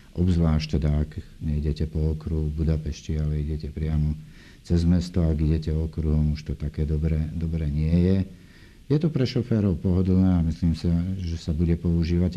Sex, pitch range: male, 75-85 Hz